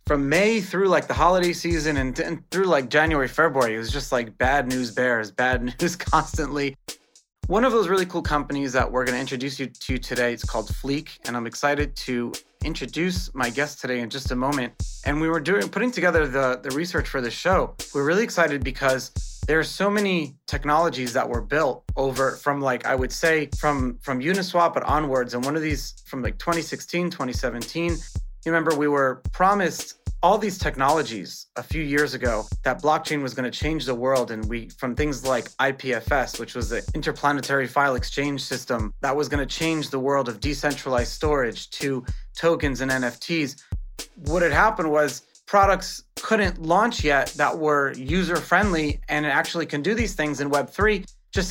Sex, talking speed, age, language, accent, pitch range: male, 190 wpm, 30-49, English, American, 130-165 Hz